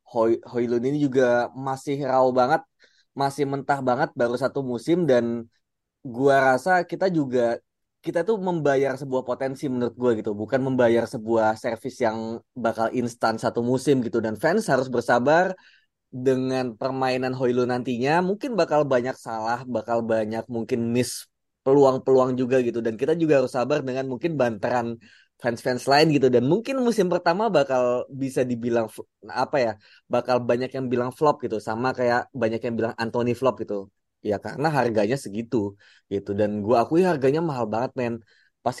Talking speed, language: 160 wpm, Indonesian